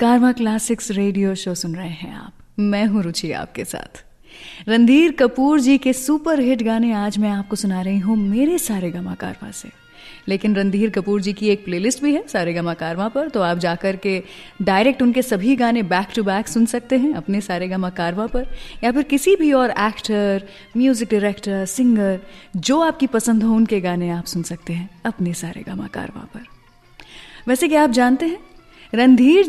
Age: 30-49